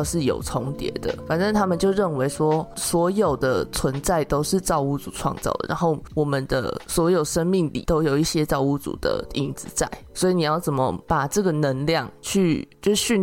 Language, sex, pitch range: Chinese, female, 145-175 Hz